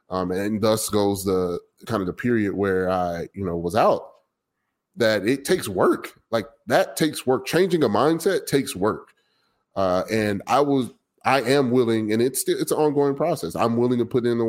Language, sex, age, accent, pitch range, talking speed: English, male, 30-49, American, 100-120 Hz, 195 wpm